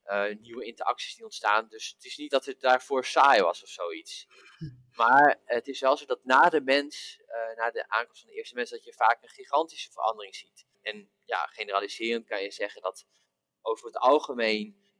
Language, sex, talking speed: Dutch, male, 200 wpm